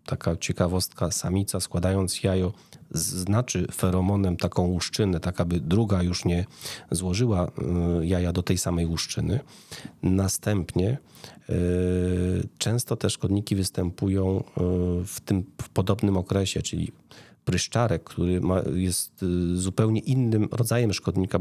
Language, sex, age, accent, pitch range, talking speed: Polish, male, 40-59, native, 90-100 Hz, 110 wpm